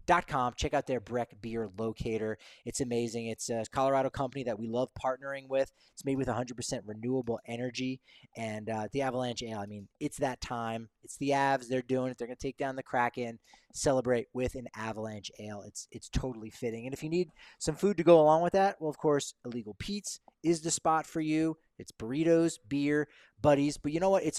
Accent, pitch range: American, 115-145 Hz